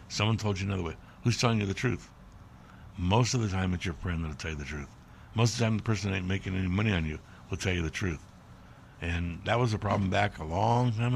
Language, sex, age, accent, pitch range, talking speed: English, male, 60-79, American, 90-115 Hz, 270 wpm